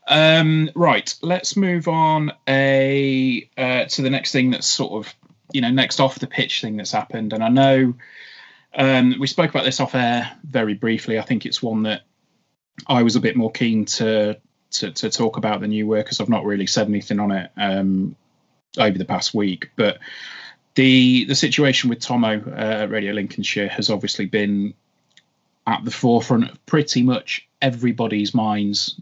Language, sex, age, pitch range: English, male, 30-49, 105-135 Hz